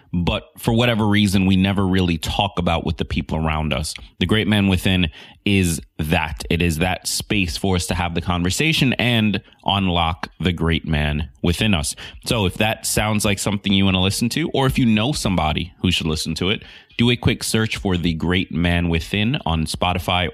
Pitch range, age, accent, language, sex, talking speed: 85-105 Hz, 30-49, American, English, male, 205 wpm